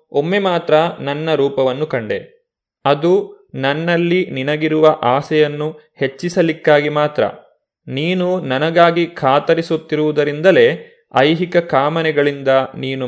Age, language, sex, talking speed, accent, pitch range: 30-49, Kannada, male, 80 wpm, native, 135-170 Hz